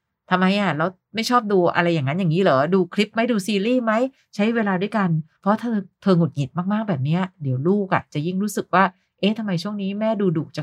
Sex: female